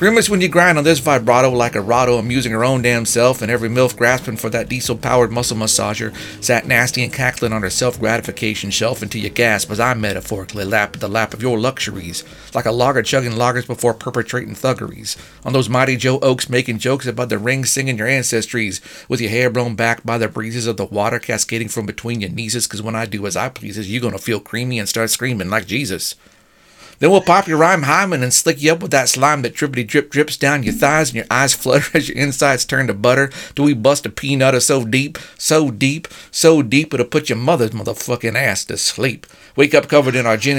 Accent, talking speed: American, 230 wpm